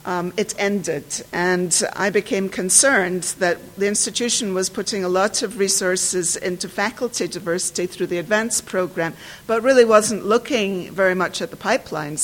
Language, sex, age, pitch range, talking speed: English, female, 50-69, 175-215 Hz, 155 wpm